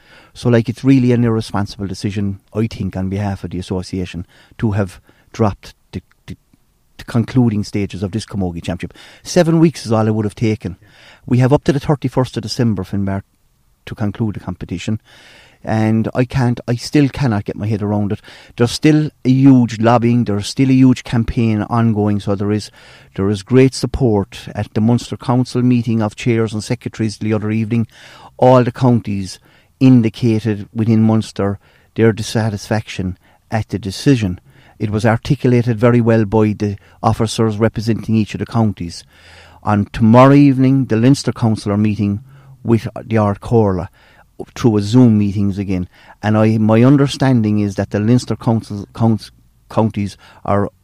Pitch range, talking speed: 100-120 Hz, 165 wpm